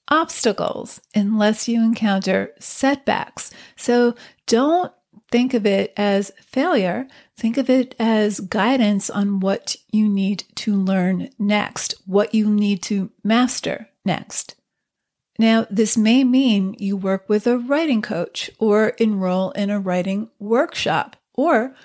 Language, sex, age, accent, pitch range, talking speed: English, female, 40-59, American, 195-230 Hz, 130 wpm